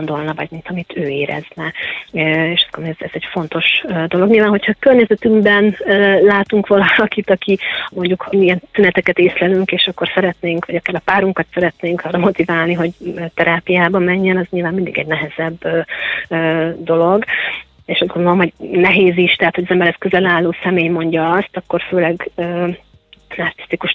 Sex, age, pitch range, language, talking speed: female, 30-49, 165-190 Hz, Hungarian, 150 wpm